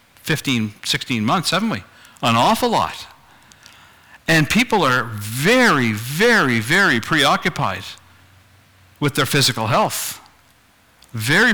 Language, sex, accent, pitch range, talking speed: English, male, American, 115-165 Hz, 105 wpm